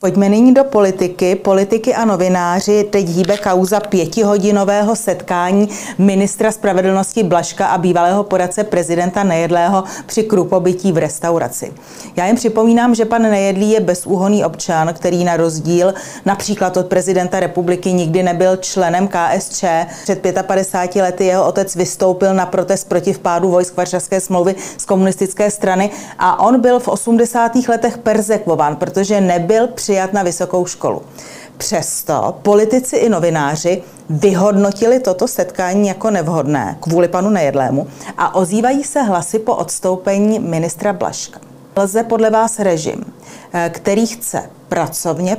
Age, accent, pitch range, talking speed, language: 30-49, native, 175-210 Hz, 130 wpm, Czech